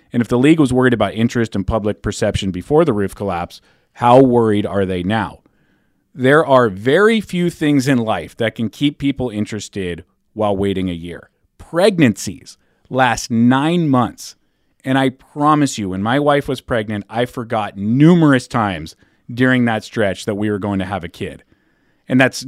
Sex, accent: male, American